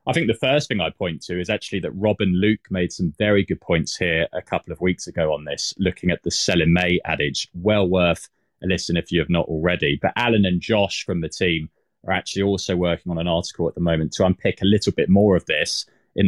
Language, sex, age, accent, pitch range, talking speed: English, male, 20-39, British, 85-100 Hz, 250 wpm